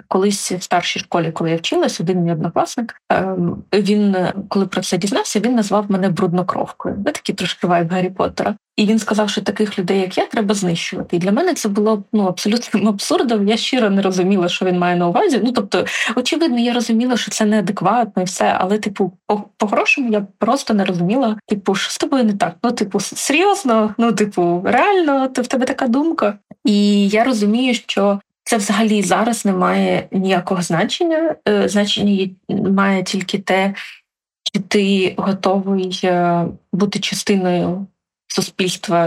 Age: 20-39